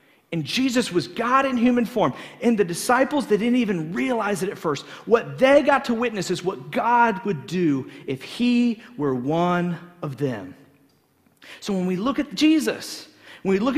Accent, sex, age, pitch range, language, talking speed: American, male, 40-59, 175-240 Hz, English, 185 wpm